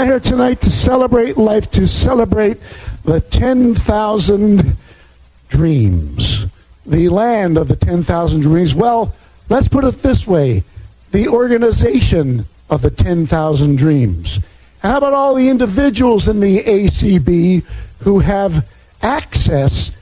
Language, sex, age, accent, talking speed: English, male, 50-69, American, 115 wpm